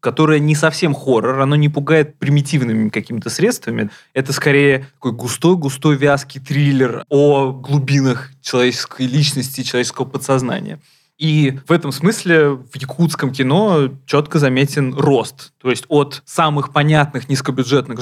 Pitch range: 130-150 Hz